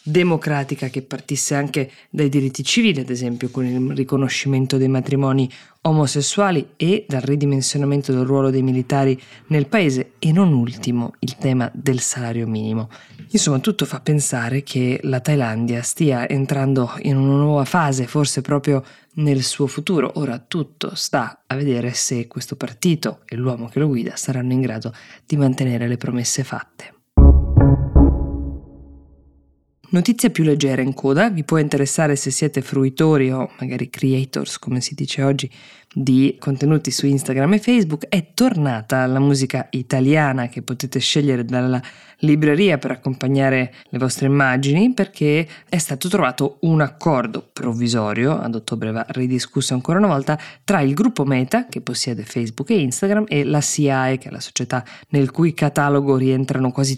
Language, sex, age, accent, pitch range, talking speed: Italian, female, 20-39, native, 125-150 Hz, 155 wpm